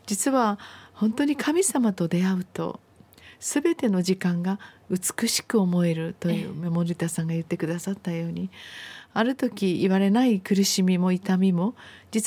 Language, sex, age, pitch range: Japanese, female, 40-59, 175-225 Hz